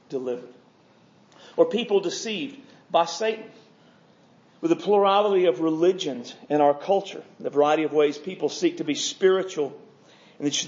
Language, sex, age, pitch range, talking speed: English, male, 40-59, 165-230 Hz, 135 wpm